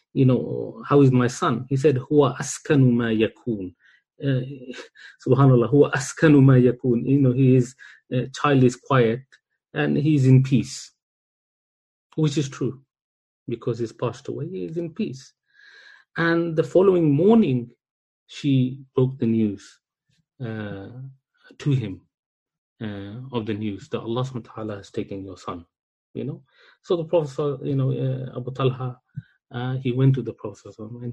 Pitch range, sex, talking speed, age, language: 120-145 Hz, male, 155 wpm, 30-49, English